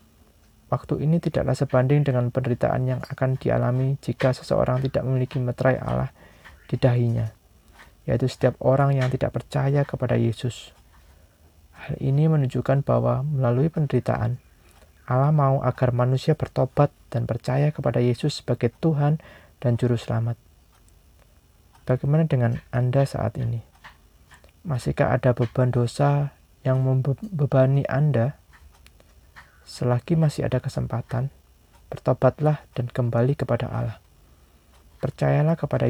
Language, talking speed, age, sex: Indonesian, 115 wpm, 20-39, male